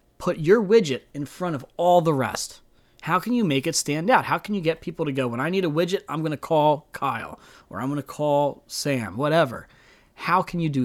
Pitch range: 130-170 Hz